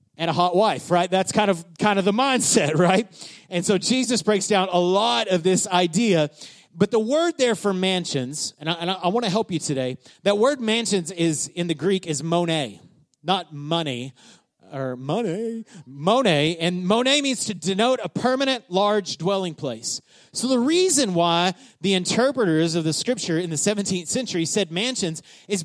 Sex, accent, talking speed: male, American, 180 wpm